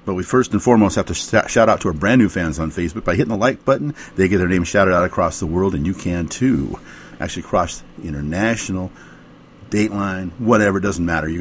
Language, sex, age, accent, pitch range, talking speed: English, male, 50-69, American, 85-110 Hz, 225 wpm